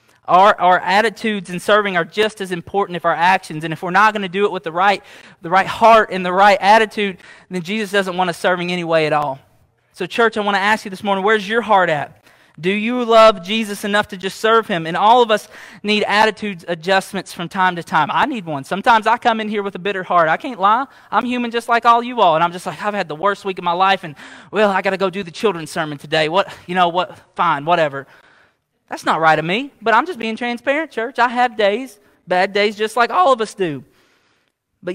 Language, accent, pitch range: English, American, 185-235 Hz